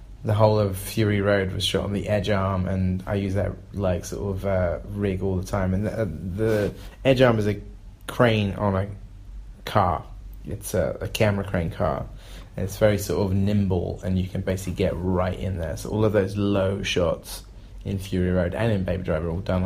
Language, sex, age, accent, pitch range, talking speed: English, male, 20-39, British, 95-110 Hz, 215 wpm